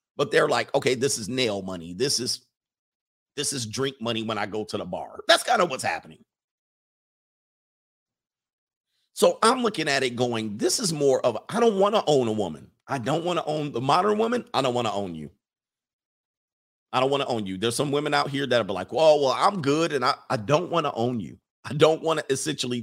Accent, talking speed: American, 230 wpm